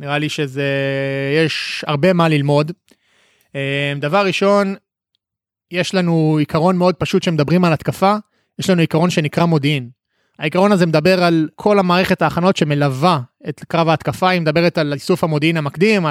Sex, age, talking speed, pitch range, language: male, 20-39, 145 wpm, 150-185 Hz, Hebrew